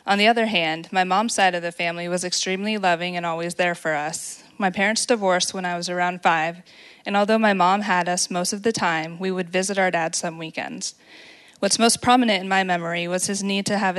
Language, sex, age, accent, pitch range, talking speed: English, female, 20-39, American, 180-205 Hz, 230 wpm